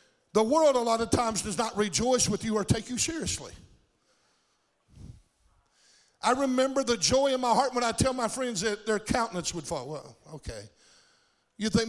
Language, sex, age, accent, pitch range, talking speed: English, male, 50-69, American, 190-240 Hz, 180 wpm